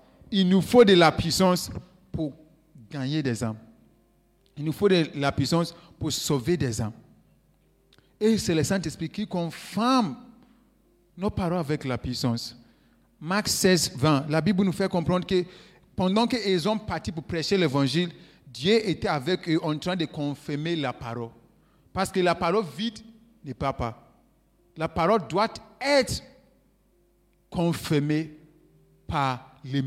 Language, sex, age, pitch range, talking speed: French, male, 50-69, 130-190 Hz, 145 wpm